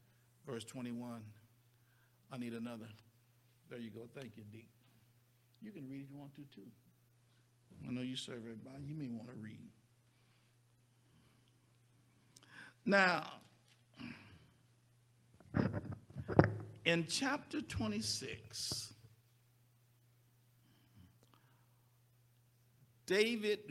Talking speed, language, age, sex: 85 wpm, English, 60-79, male